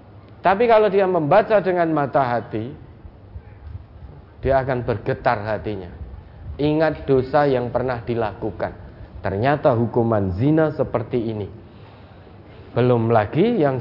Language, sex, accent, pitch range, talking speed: Indonesian, male, native, 105-145 Hz, 105 wpm